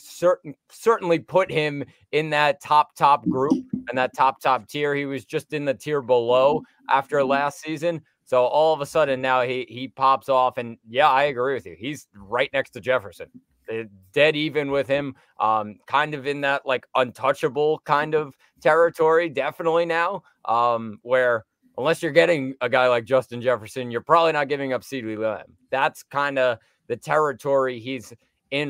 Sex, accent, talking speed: male, American, 180 wpm